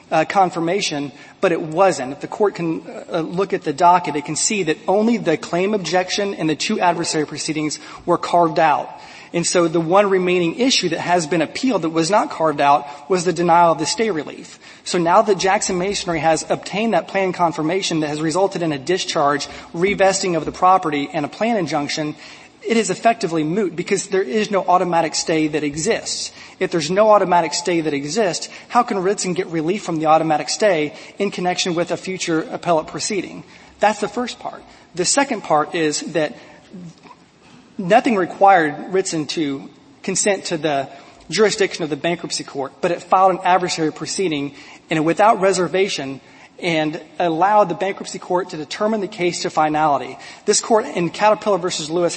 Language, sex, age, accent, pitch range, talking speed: English, male, 30-49, American, 160-195 Hz, 180 wpm